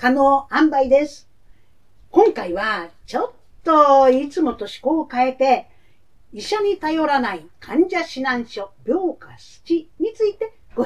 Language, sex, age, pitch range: Japanese, female, 50-69, 235-370 Hz